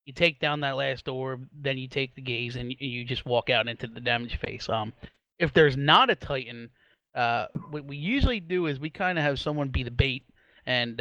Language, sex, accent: English, male, American